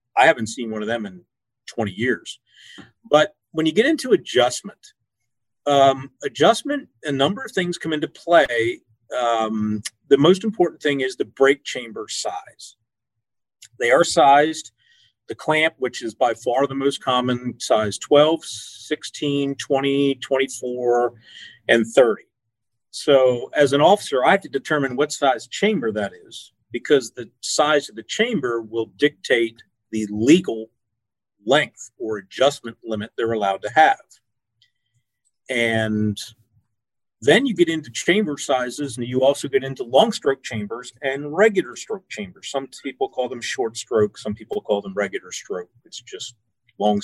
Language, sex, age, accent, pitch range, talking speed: English, male, 50-69, American, 115-150 Hz, 150 wpm